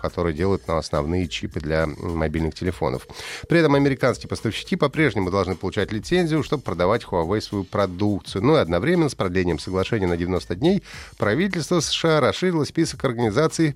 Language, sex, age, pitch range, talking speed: Russian, male, 30-49, 100-145 Hz, 150 wpm